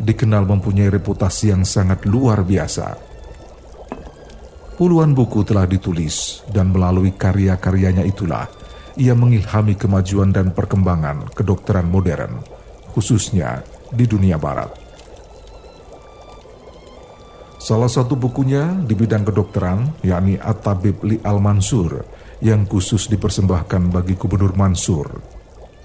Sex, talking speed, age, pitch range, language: male, 95 wpm, 50-69, 95-115 Hz, Indonesian